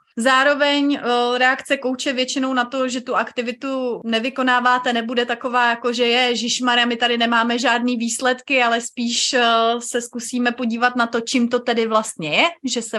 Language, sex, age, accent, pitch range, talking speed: Czech, female, 30-49, native, 235-280 Hz, 165 wpm